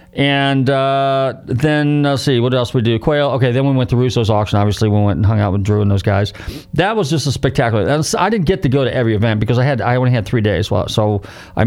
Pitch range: 105-130 Hz